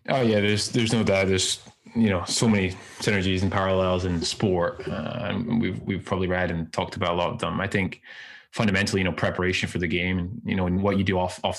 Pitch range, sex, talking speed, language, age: 95-105 Hz, male, 240 wpm, English, 20-39